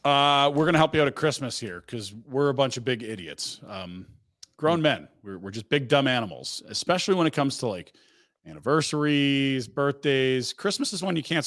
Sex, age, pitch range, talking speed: male, 40-59, 120-150 Hz, 205 wpm